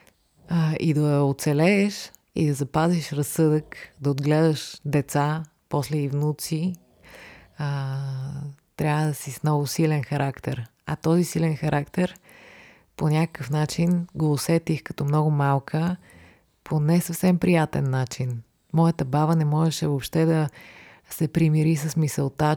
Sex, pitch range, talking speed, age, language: female, 145-170 Hz, 125 wpm, 30-49, Bulgarian